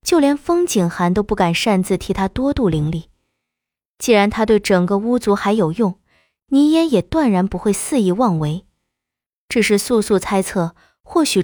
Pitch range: 175-245 Hz